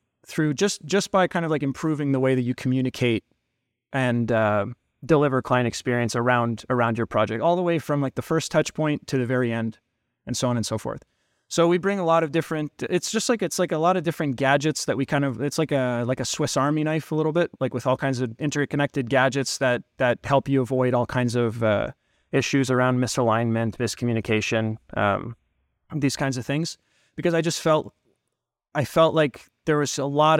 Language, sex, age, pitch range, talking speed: English, male, 20-39, 120-145 Hz, 215 wpm